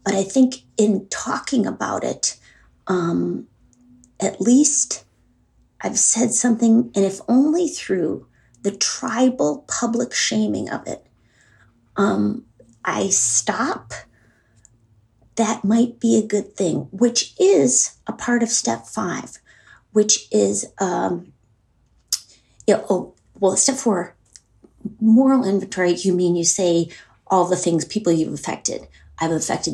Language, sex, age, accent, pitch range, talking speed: English, female, 40-59, American, 145-185 Hz, 125 wpm